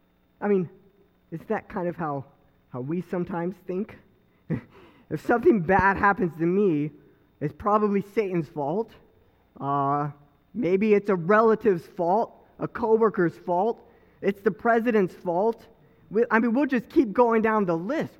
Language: English